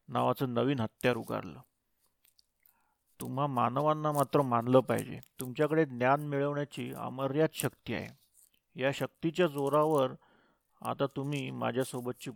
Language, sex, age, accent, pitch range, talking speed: Marathi, male, 40-59, native, 125-145 Hz, 100 wpm